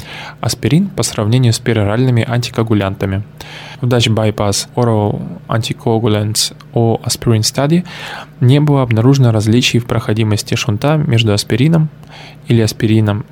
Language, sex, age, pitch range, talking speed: Russian, male, 10-29, 110-140 Hz, 115 wpm